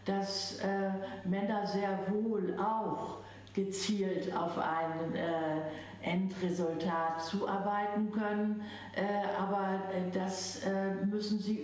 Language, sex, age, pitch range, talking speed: English, female, 60-79, 185-215 Hz, 95 wpm